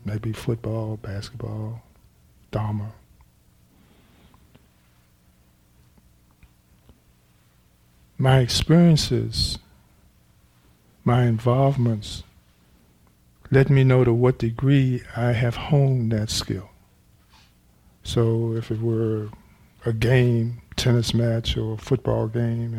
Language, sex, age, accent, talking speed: English, male, 50-69, American, 80 wpm